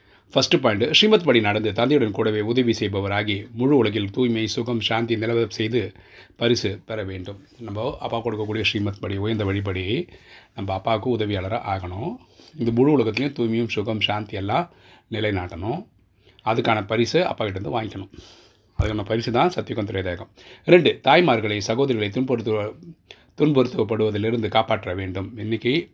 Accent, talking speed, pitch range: native, 120 wpm, 100-120 Hz